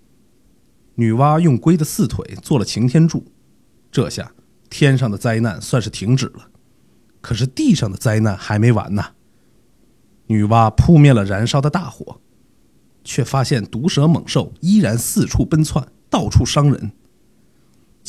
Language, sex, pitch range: Chinese, male, 110-145 Hz